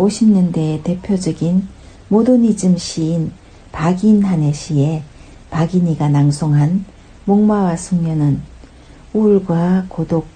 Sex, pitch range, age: female, 145-200 Hz, 60-79